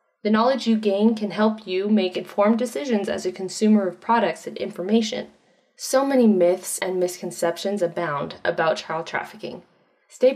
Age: 20-39